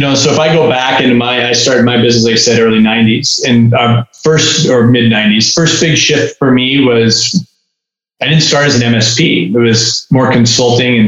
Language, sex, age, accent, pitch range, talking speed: English, male, 20-39, American, 115-135 Hz, 220 wpm